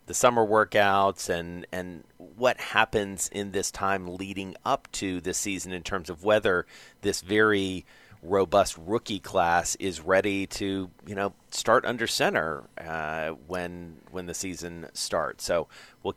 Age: 40-59